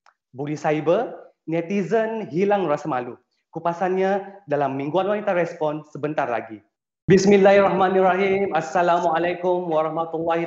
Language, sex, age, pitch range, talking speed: Malay, male, 30-49, 155-195 Hz, 90 wpm